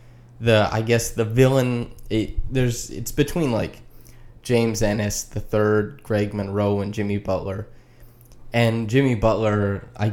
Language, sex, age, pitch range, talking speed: English, male, 20-39, 105-120 Hz, 135 wpm